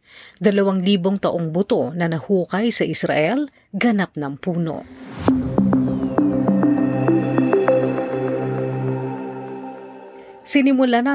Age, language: 40-59, Filipino